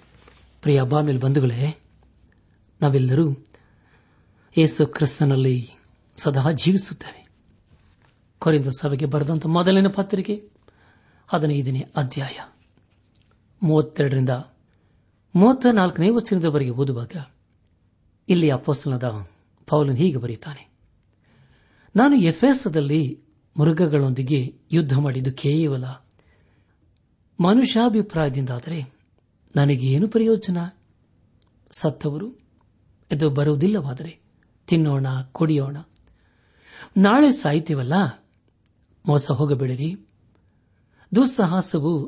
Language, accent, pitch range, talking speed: Kannada, native, 110-165 Hz, 60 wpm